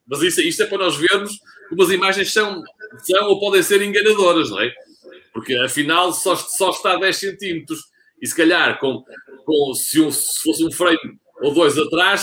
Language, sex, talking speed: Portuguese, male, 195 wpm